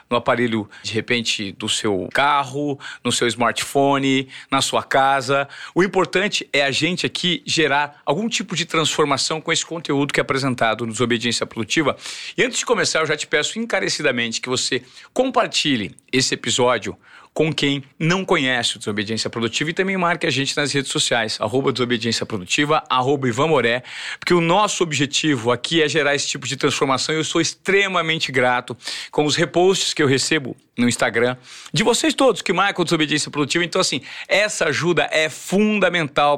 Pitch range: 130-170 Hz